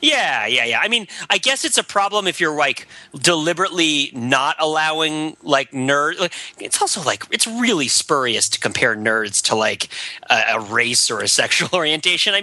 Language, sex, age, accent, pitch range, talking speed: English, male, 30-49, American, 130-185 Hz, 180 wpm